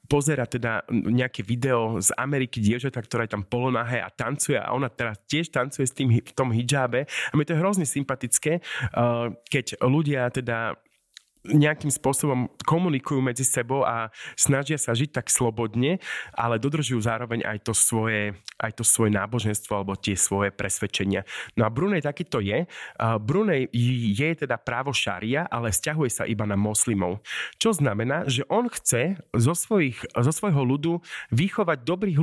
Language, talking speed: Slovak, 160 wpm